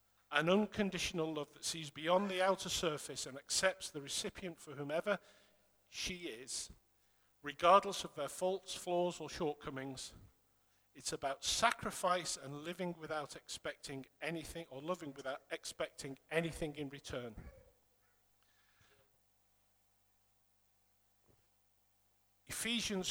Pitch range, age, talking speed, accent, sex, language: 135-185 Hz, 50-69, 105 wpm, British, male, English